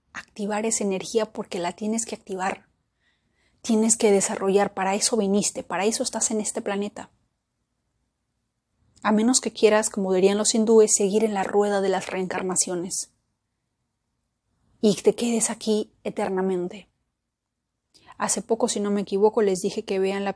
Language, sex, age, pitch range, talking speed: Spanish, female, 30-49, 190-220 Hz, 150 wpm